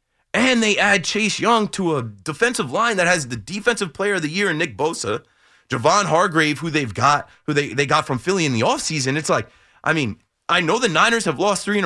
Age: 30-49